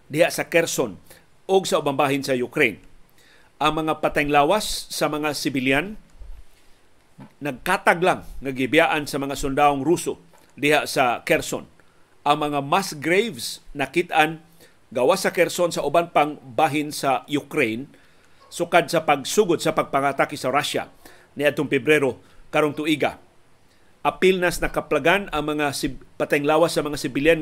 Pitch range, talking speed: 140-170 Hz, 135 wpm